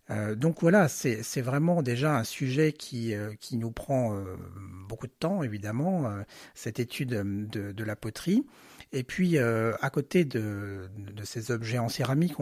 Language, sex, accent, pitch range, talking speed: French, male, French, 105-140 Hz, 155 wpm